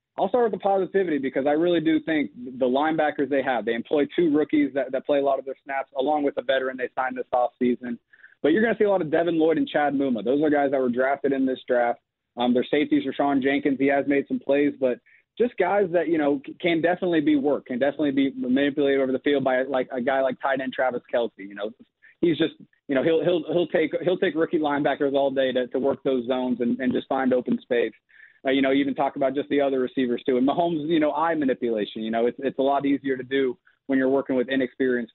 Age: 30-49